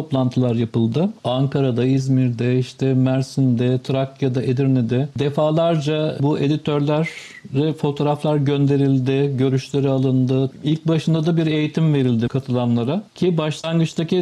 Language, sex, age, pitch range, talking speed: Turkish, male, 50-69, 135-160 Hz, 100 wpm